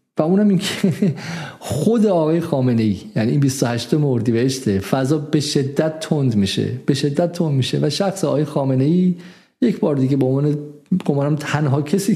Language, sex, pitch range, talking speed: Persian, male, 135-180 Hz, 175 wpm